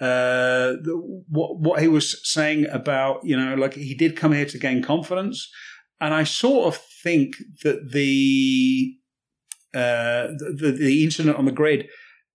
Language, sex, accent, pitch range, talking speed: English, male, British, 130-155 Hz, 160 wpm